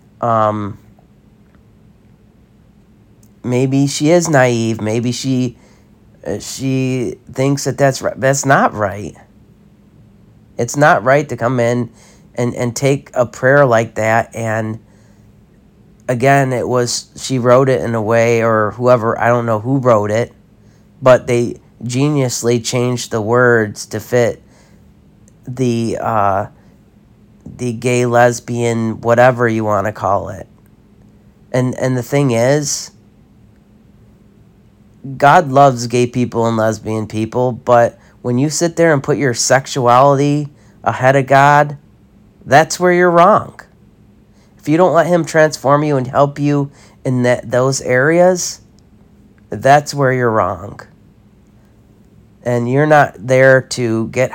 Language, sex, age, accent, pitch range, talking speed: English, male, 30-49, American, 110-135 Hz, 130 wpm